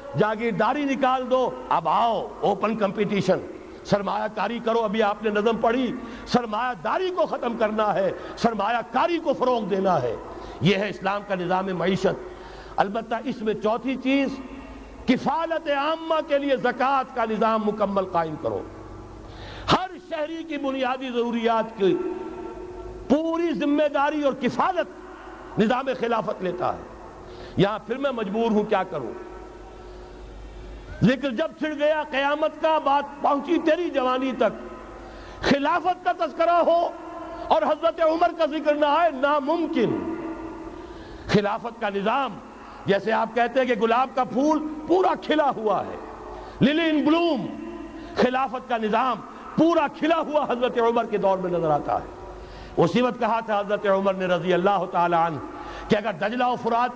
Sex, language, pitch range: male, Urdu, 215-310 Hz